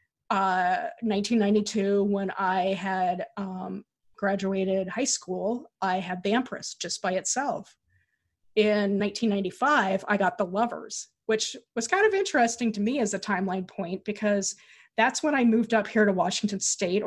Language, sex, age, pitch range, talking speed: English, female, 20-39, 195-230 Hz, 150 wpm